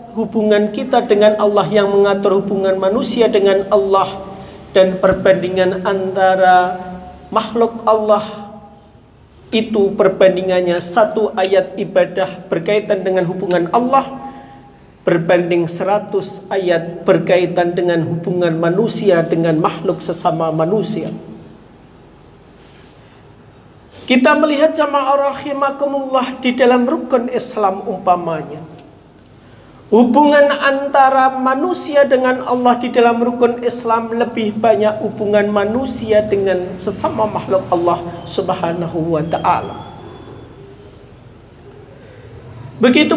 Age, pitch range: 50-69, 185-255 Hz